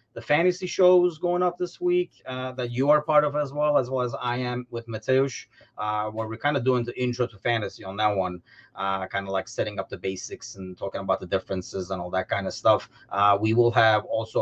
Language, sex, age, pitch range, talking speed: English, male, 30-49, 100-130 Hz, 235 wpm